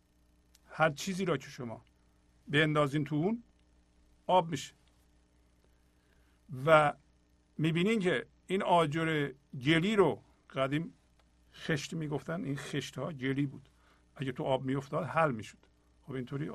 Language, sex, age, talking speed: Persian, male, 50-69, 120 wpm